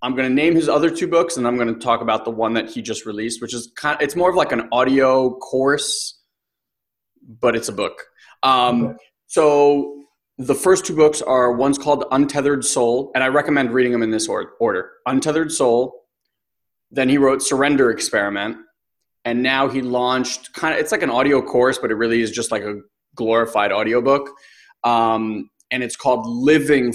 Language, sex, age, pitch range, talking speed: English, male, 20-39, 120-150 Hz, 190 wpm